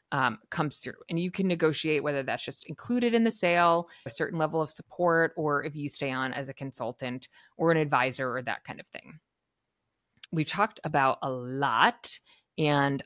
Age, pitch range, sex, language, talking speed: 30-49, 140-185 Hz, female, English, 190 wpm